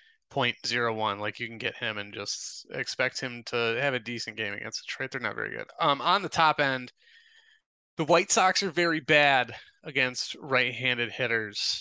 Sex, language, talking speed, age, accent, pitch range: male, English, 185 wpm, 20-39, American, 115-140 Hz